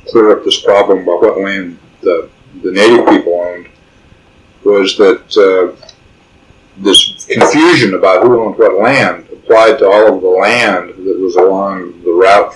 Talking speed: 160 wpm